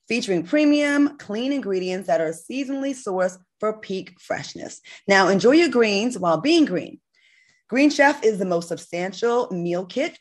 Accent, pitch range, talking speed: American, 170-250 Hz, 155 wpm